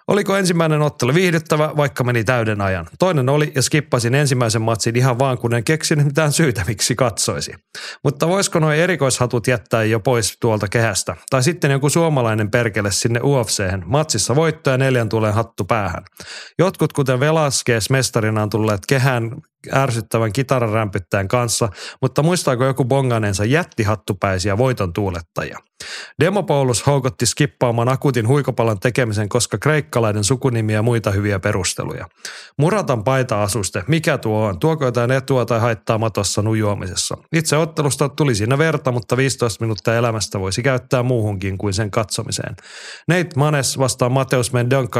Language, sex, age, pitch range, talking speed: Finnish, male, 30-49, 110-140 Hz, 145 wpm